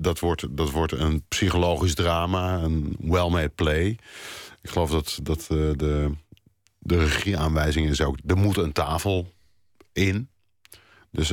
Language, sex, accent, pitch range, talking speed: Dutch, male, Dutch, 80-95 Hz, 125 wpm